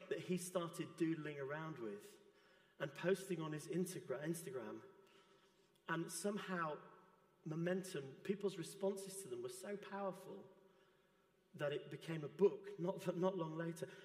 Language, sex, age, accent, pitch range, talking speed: English, male, 40-59, British, 170-190 Hz, 130 wpm